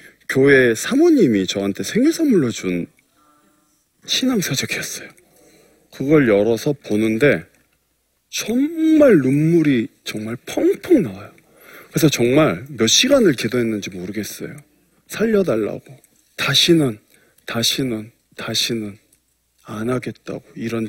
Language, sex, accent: Korean, male, native